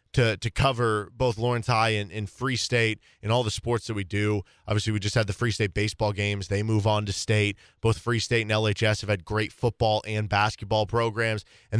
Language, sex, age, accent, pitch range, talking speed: English, male, 20-39, American, 105-130 Hz, 225 wpm